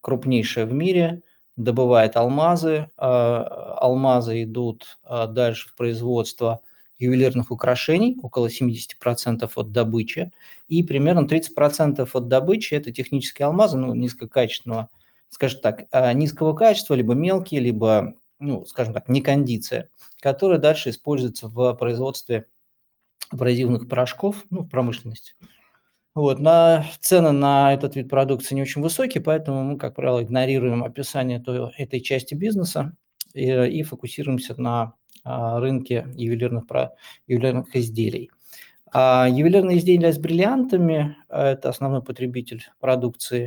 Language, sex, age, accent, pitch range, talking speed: Russian, male, 20-39, native, 120-150 Hz, 120 wpm